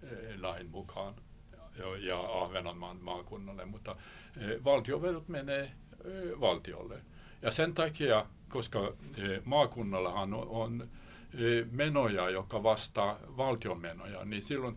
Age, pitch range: 60-79, 90-115 Hz